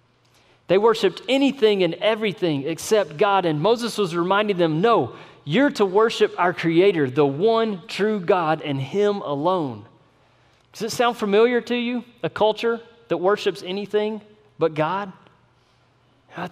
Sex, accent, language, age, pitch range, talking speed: male, American, English, 40-59, 160-215 Hz, 140 wpm